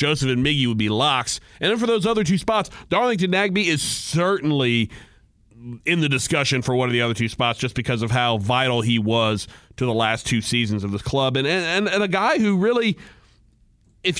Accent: American